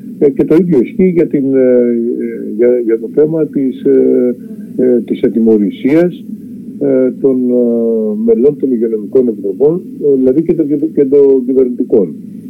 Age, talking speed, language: 50-69, 100 wpm, Greek